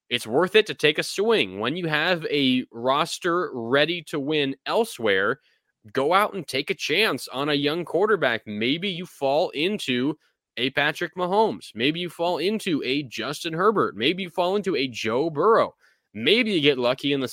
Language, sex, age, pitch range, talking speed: English, male, 20-39, 120-155 Hz, 185 wpm